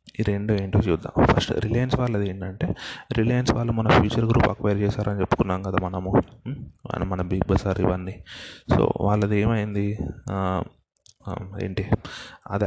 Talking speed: 135 wpm